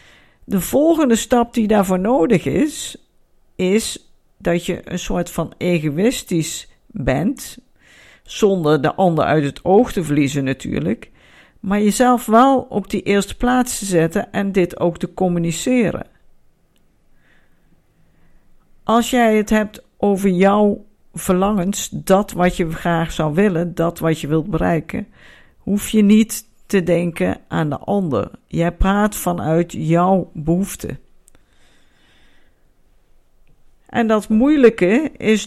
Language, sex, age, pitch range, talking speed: Dutch, female, 50-69, 170-220 Hz, 125 wpm